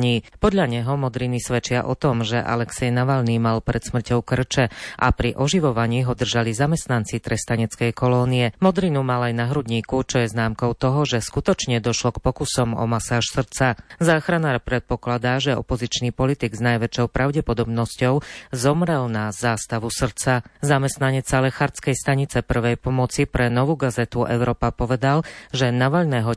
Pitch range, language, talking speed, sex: 120-135 Hz, Slovak, 140 wpm, female